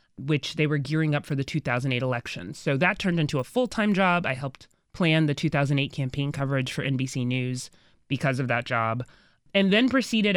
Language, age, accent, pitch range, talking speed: English, 20-39, American, 135-160 Hz, 190 wpm